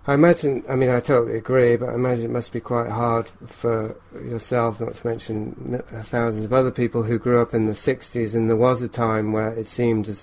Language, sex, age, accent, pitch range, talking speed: English, male, 40-59, British, 110-125 Hz, 230 wpm